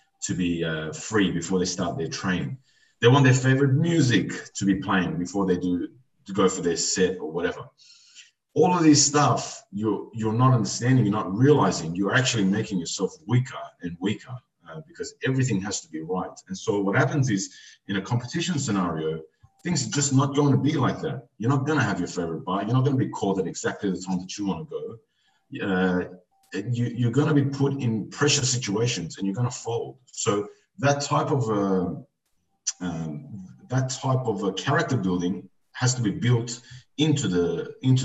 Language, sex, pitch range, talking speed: English, male, 95-145 Hz, 195 wpm